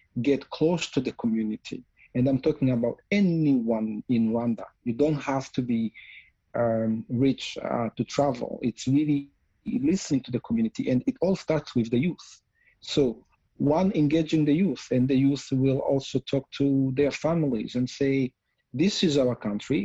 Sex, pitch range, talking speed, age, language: male, 120-150 Hz, 165 wpm, 40-59, English